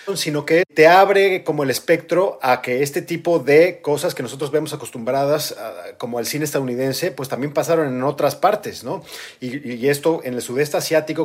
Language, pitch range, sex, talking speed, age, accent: Spanish, 130-170 Hz, male, 185 wpm, 40-59, Mexican